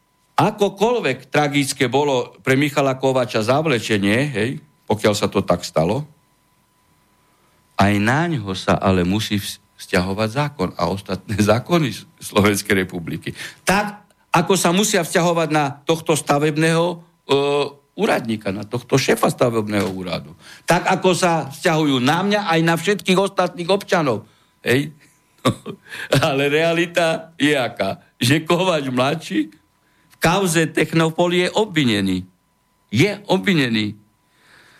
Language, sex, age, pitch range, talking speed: Slovak, male, 60-79, 110-165 Hz, 115 wpm